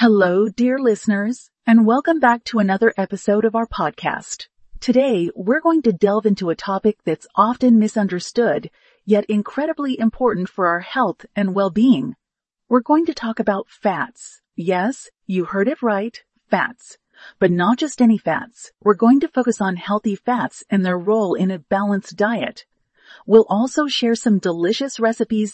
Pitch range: 195-240 Hz